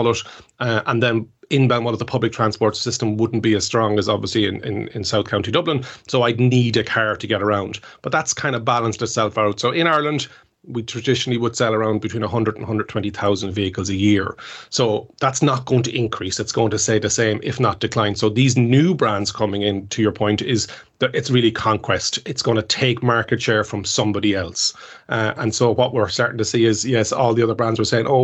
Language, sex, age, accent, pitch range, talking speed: English, male, 30-49, Irish, 110-125 Hz, 225 wpm